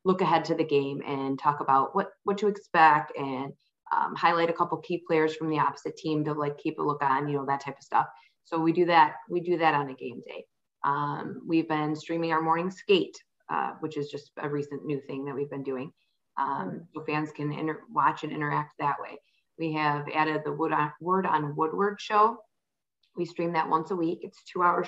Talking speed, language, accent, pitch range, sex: 225 wpm, English, American, 150-175 Hz, female